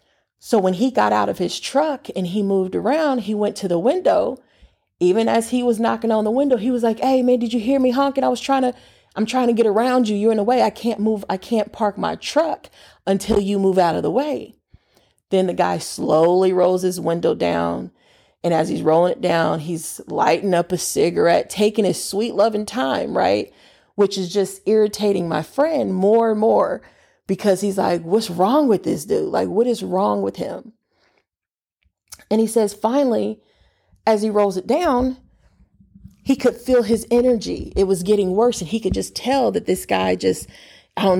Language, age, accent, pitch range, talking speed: English, 30-49, American, 185-235 Hz, 205 wpm